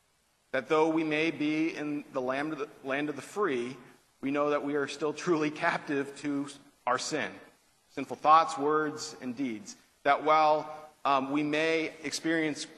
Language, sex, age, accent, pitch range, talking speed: English, male, 40-59, American, 130-155 Hz, 170 wpm